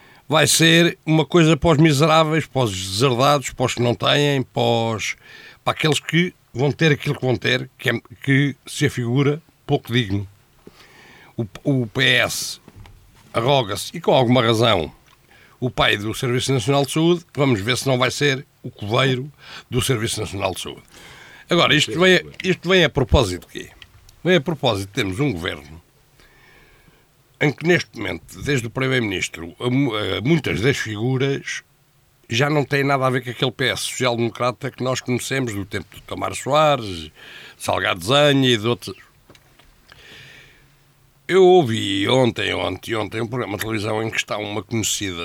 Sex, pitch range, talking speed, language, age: male, 105-140 Hz, 160 wpm, Portuguese, 60-79